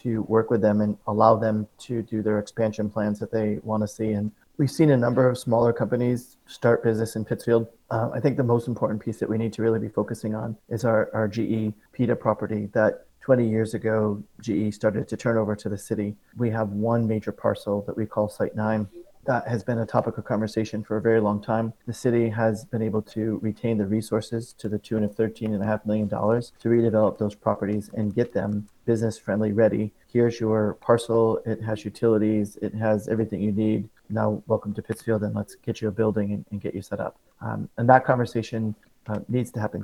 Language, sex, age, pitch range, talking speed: English, male, 30-49, 105-115 Hz, 215 wpm